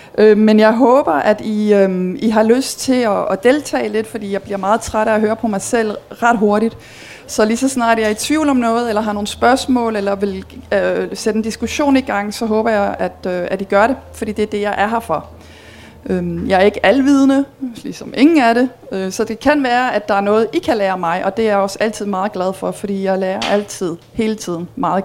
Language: Danish